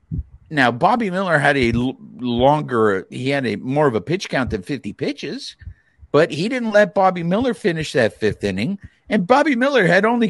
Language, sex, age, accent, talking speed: English, male, 50-69, American, 185 wpm